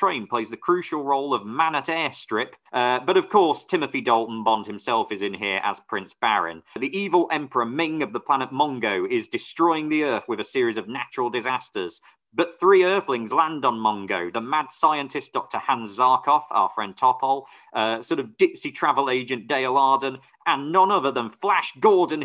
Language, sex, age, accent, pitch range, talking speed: English, male, 40-59, British, 120-165 Hz, 185 wpm